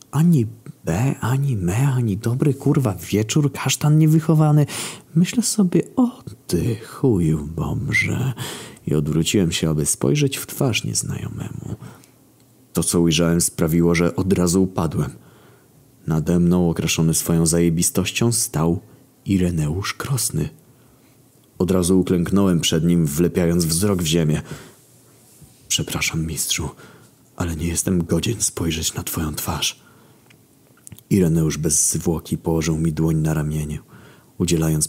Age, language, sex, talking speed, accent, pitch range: 30-49, Polish, male, 115 wpm, native, 80-125 Hz